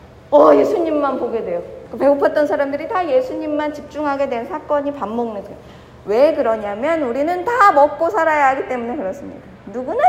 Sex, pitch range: female, 235-305 Hz